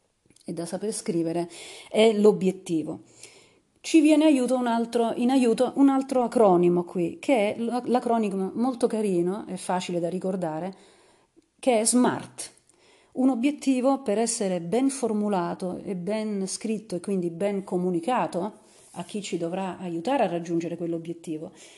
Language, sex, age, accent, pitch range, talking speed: Italian, female, 40-59, native, 175-225 Hz, 140 wpm